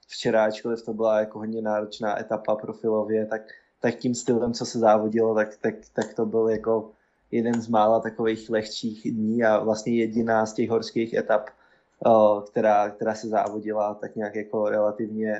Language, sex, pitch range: Slovak, male, 110-120 Hz